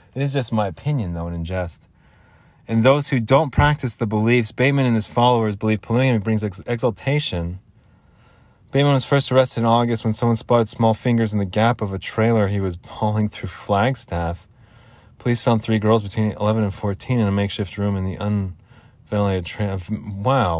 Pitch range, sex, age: 105-130 Hz, male, 30-49